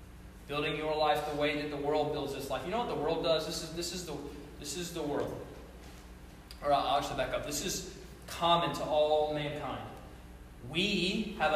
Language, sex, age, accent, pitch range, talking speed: English, male, 30-49, American, 150-205 Hz, 200 wpm